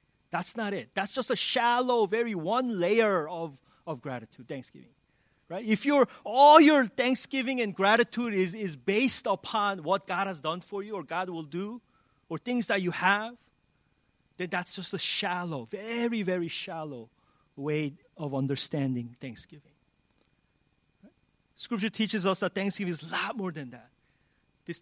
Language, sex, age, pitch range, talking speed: English, male, 30-49, 160-220 Hz, 155 wpm